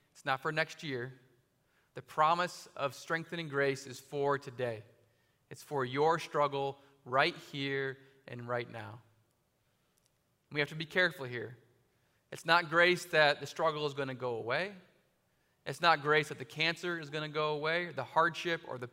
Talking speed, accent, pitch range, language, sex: 170 wpm, American, 130-160 Hz, English, male